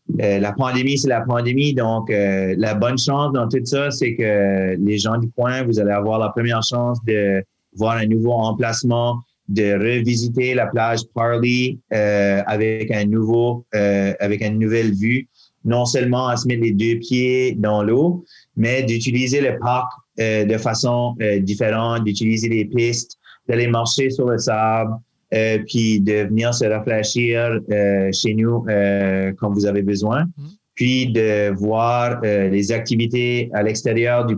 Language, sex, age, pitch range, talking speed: French, male, 30-49, 105-125 Hz, 160 wpm